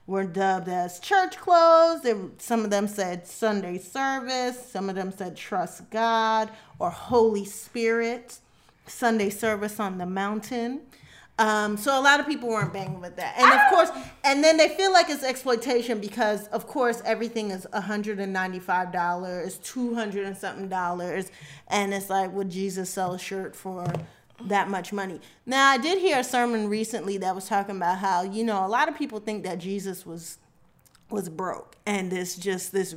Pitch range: 185-230 Hz